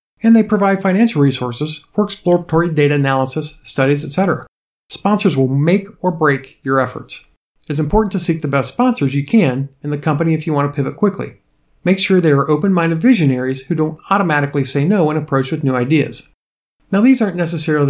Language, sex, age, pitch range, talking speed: English, male, 50-69, 140-190 Hz, 190 wpm